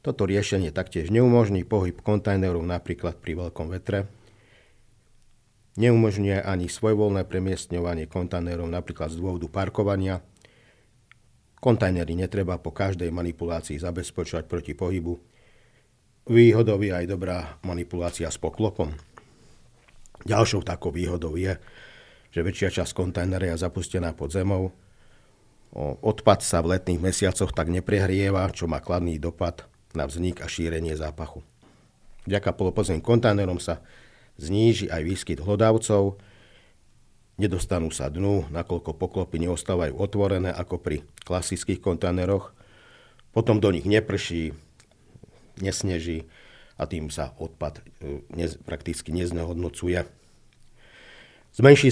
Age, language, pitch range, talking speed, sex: 50-69, Slovak, 85-105 Hz, 105 wpm, male